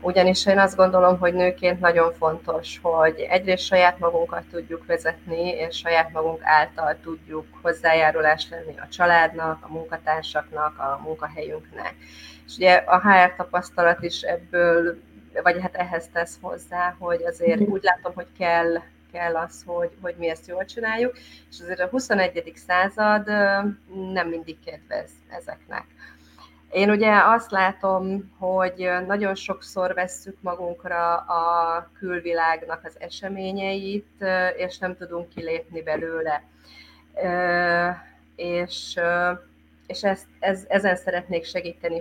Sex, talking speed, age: female, 125 wpm, 30-49